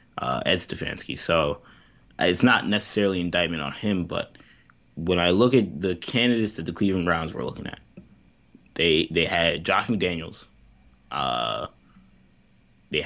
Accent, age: American, 20-39